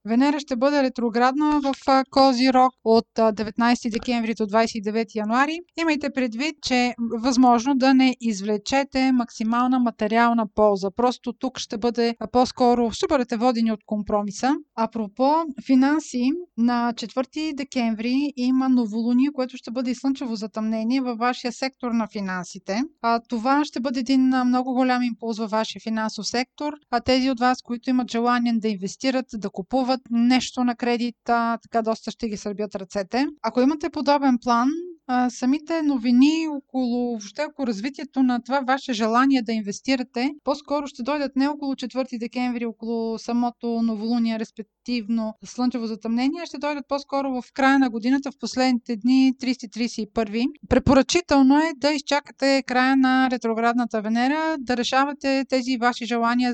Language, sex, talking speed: Bulgarian, female, 140 wpm